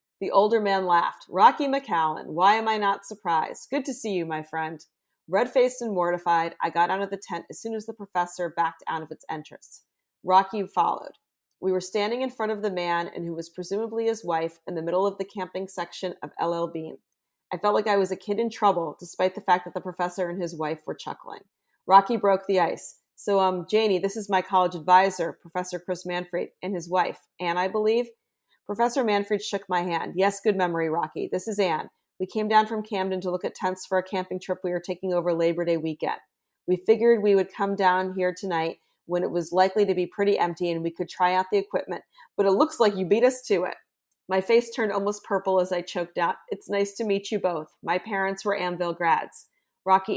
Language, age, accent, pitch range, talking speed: English, 40-59, American, 175-205 Hz, 225 wpm